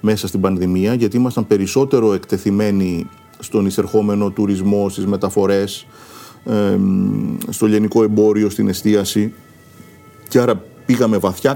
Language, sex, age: Greek, male, 40-59